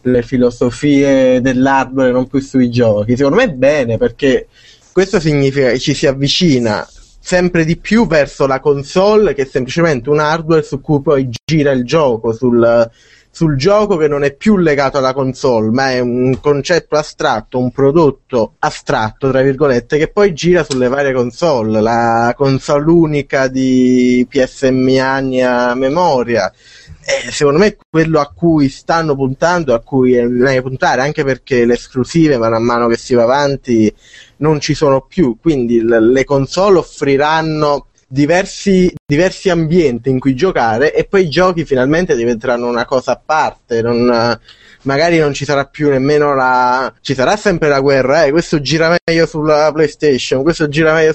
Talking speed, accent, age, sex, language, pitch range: 160 wpm, native, 20-39, male, Italian, 125-155 Hz